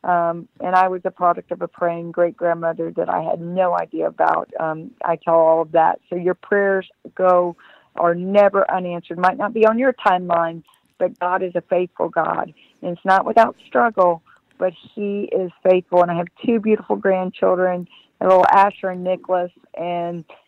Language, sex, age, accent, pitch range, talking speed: English, female, 50-69, American, 175-190 Hz, 180 wpm